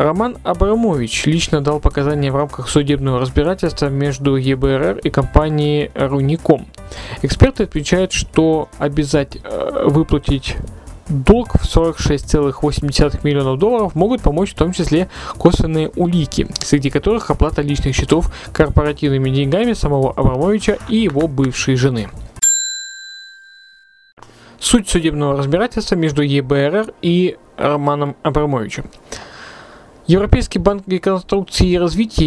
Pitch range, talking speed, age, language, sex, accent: 145-185 Hz, 105 wpm, 20-39, Russian, male, native